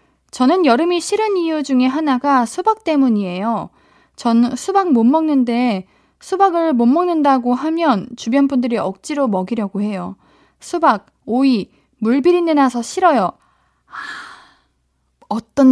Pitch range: 210-300 Hz